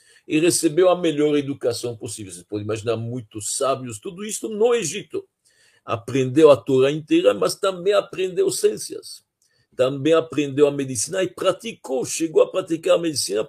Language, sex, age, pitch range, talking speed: Portuguese, male, 50-69, 115-190 Hz, 150 wpm